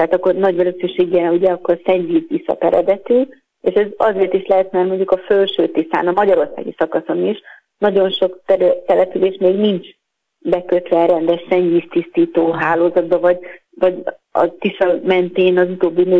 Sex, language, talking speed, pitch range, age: female, Hungarian, 150 wpm, 175-210 Hz, 30-49